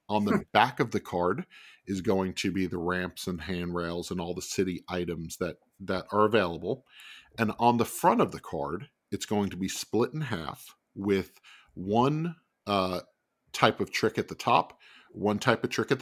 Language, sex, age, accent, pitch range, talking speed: English, male, 40-59, American, 90-110 Hz, 190 wpm